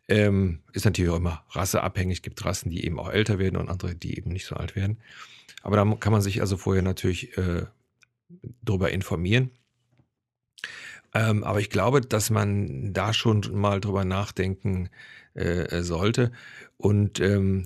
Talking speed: 165 wpm